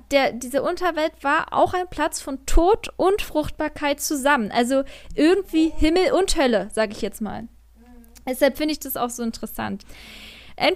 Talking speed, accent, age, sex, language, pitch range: 160 wpm, German, 20-39, female, German, 220-290 Hz